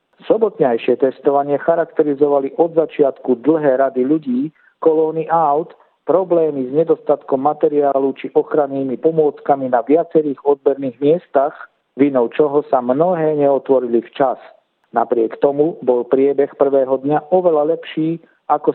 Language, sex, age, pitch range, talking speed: Slovak, male, 50-69, 135-160 Hz, 115 wpm